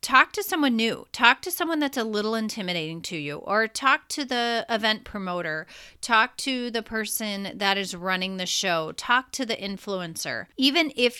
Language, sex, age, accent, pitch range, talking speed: English, female, 30-49, American, 185-245 Hz, 180 wpm